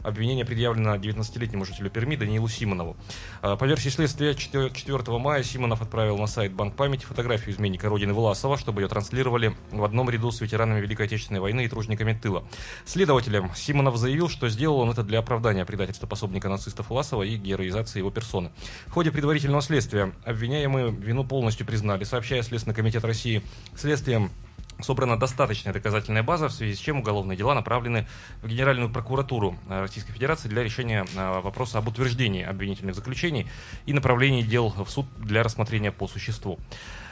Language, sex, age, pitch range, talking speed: Russian, male, 20-39, 100-125 Hz, 160 wpm